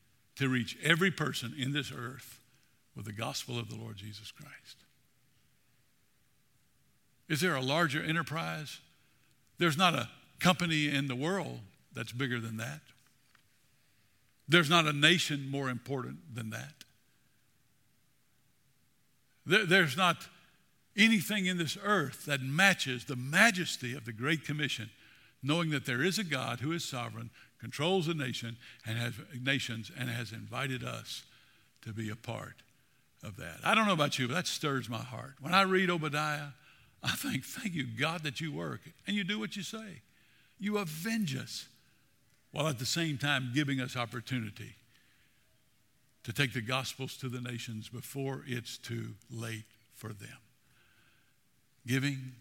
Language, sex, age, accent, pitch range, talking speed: English, male, 60-79, American, 120-155 Hz, 150 wpm